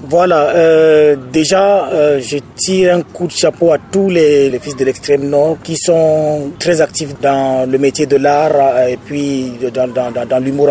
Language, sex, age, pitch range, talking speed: English, male, 30-49, 130-150 Hz, 190 wpm